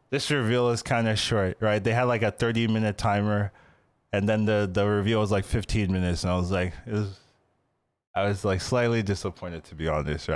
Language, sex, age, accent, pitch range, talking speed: English, male, 20-39, American, 95-125 Hz, 215 wpm